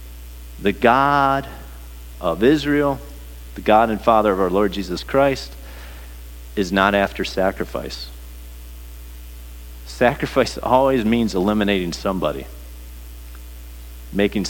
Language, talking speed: English, 95 wpm